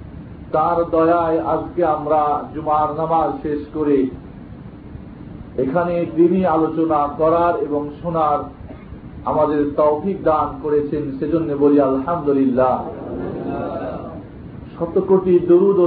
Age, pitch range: 50-69, 145-175 Hz